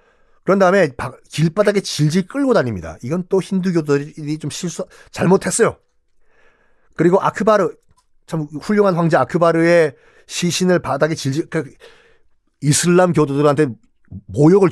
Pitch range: 120-190 Hz